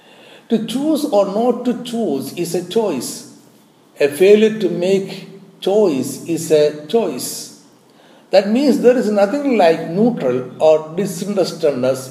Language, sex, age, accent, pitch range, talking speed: Malayalam, male, 60-79, native, 145-200 Hz, 130 wpm